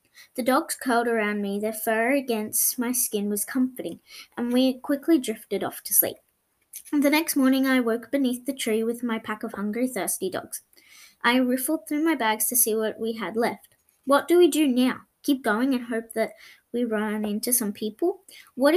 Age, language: 10-29, English